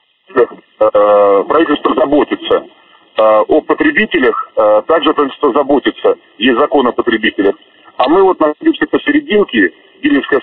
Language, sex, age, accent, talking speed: Russian, male, 40-59, native, 100 wpm